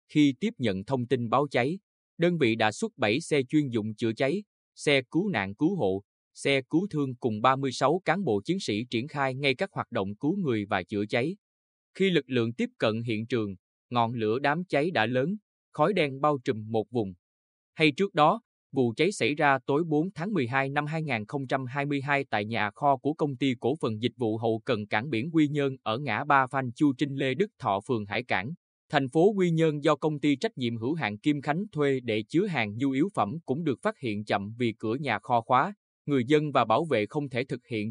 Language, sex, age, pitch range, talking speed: Vietnamese, male, 20-39, 115-150 Hz, 225 wpm